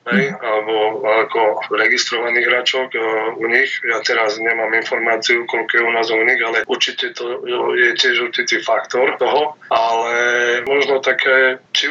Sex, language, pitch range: male, Slovak, 120-135 Hz